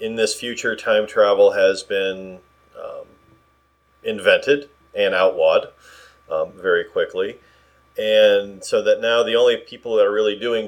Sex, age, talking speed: male, 40-59, 140 wpm